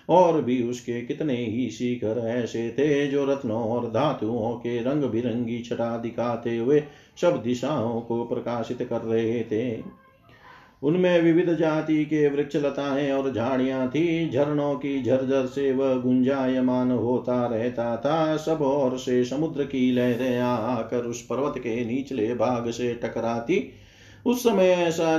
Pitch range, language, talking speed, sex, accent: 120-140 Hz, Hindi, 135 wpm, male, native